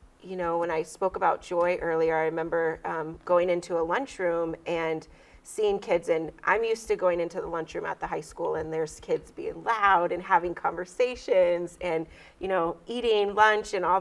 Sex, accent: female, American